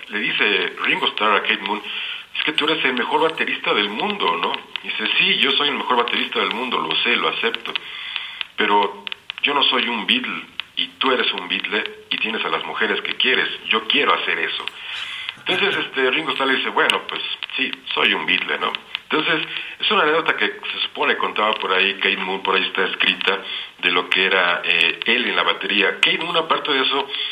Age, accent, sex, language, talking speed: 50-69, Mexican, male, Spanish, 210 wpm